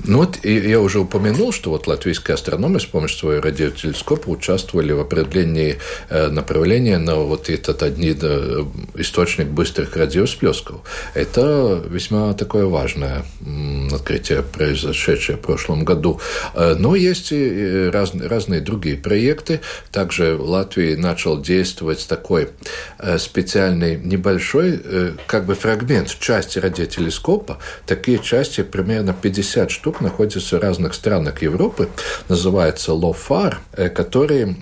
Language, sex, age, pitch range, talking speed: Russian, male, 60-79, 80-105 Hz, 125 wpm